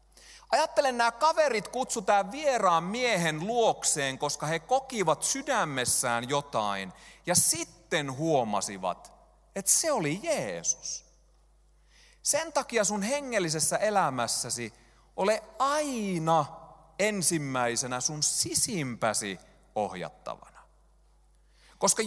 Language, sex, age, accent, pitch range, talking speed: Finnish, male, 30-49, native, 135-215 Hz, 85 wpm